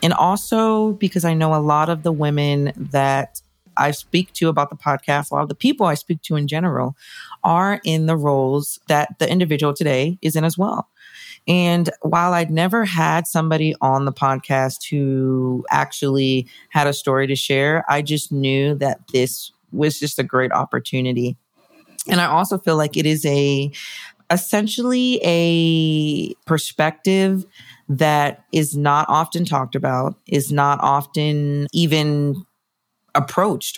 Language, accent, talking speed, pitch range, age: English, American, 155 wpm, 140-175 Hz, 30-49